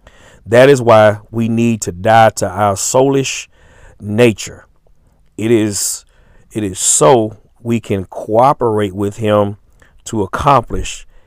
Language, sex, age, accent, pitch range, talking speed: English, male, 40-59, American, 95-110 Hz, 125 wpm